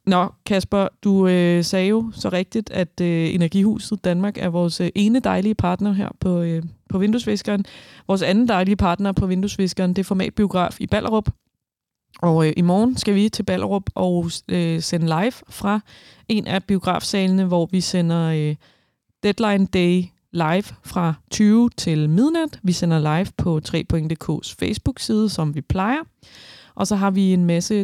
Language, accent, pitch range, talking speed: Danish, native, 170-200 Hz, 165 wpm